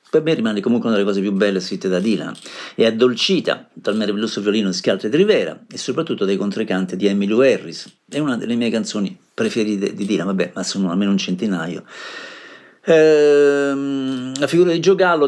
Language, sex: Italian, male